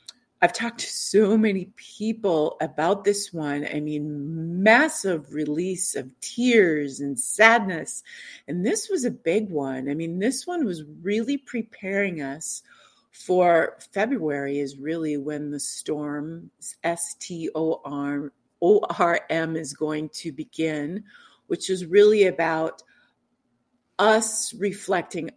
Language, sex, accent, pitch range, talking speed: English, female, American, 155-195 Hz, 115 wpm